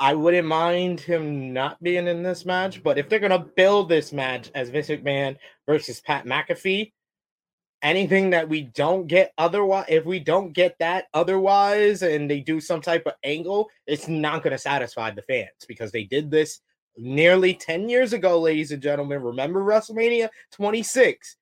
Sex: male